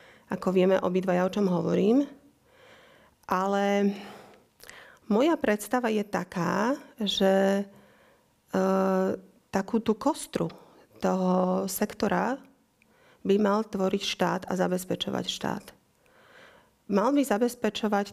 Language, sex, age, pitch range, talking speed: Slovak, female, 30-49, 190-225 Hz, 95 wpm